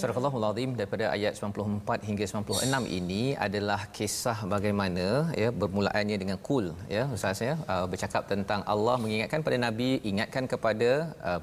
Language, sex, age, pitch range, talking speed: Malayalam, male, 30-49, 105-135 Hz, 135 wpm